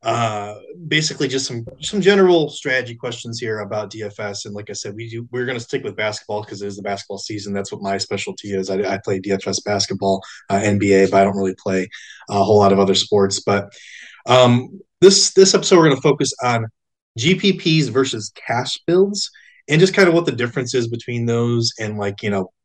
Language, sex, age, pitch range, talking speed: English, male, 20-39, 105-130 Hz, 210 wpm